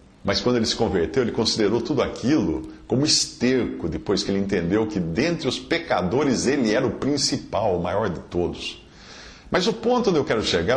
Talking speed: 190 wpm